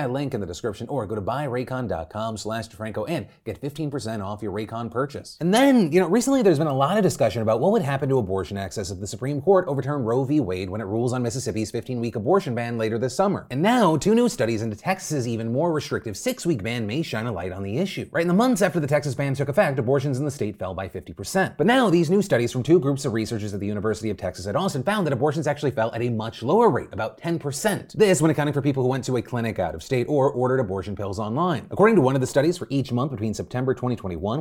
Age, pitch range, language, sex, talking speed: 30-49, 110-155 Hz, English, male, 265 wpm